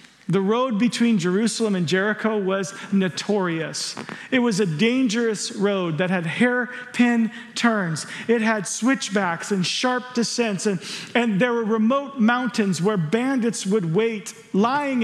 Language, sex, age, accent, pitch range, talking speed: English, male, 40-59, American, 195-250 Hz, 135 wpm